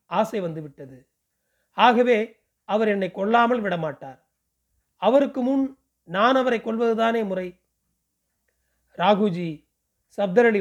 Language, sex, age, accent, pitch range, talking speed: Tamil, male, 40-59, native, 175-225 Hz, 85 wpm